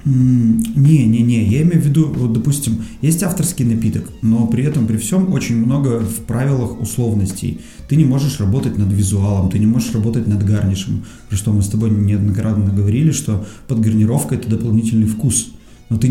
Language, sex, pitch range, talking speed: Russian, male, 105-120 Hz, 180 wpm